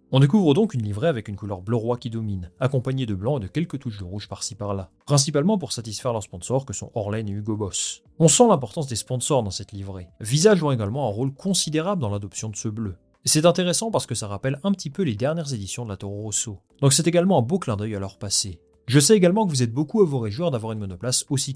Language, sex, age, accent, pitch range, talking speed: French, male, 30-49, French, 105-145 Hz, 260 wpm